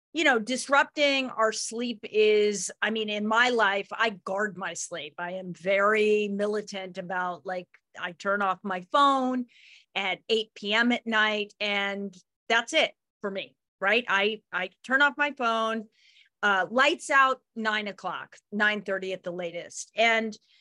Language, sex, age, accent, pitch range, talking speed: English, female, 40-59, American, 200-260 Hz, 155 wpm